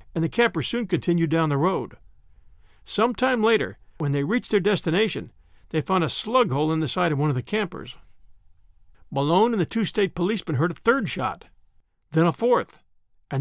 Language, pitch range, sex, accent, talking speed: English, 125-195 Hz, male, American, 190 wpm